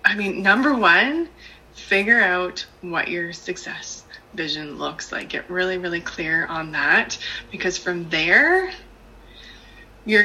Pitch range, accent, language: 185-260 Hz, American, English